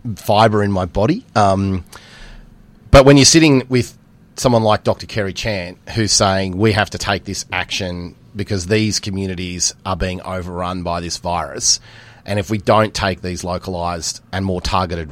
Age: 30-49